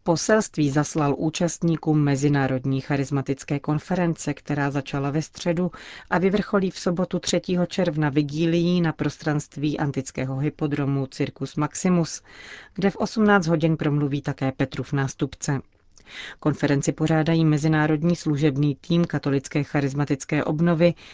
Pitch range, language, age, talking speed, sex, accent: 140-170 Hz, Czech, 40-59, 115 wpm, female, native